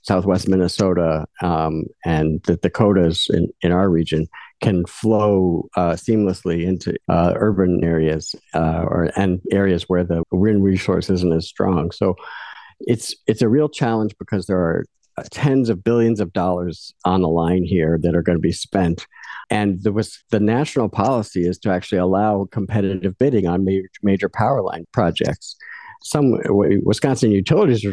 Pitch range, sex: 90-110 Hz, male